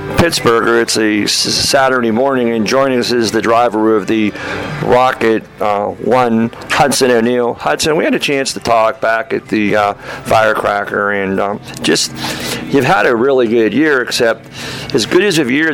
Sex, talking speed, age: male, 170 wpm, 50-69